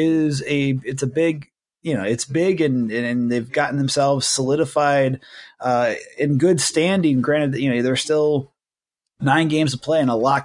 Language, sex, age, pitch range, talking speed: English, male, 30-49, 130-150 Hz, 180 wpm